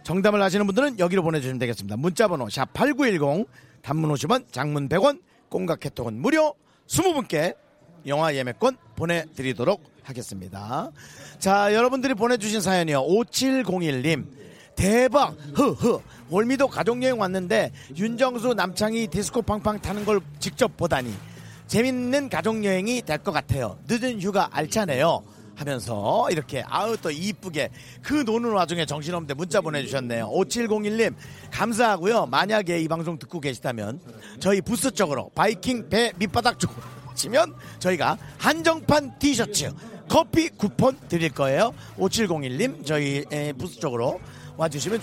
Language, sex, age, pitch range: Korean, male, 40-59, 145-225 Hz